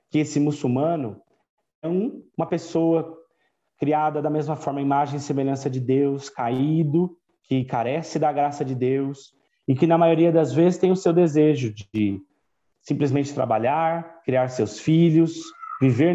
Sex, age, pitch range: male, 30-49, 125-160 Hz